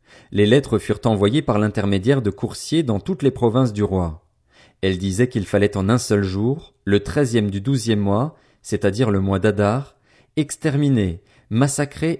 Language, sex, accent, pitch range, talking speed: French, male, French, 105-135 Hz, 160 wpm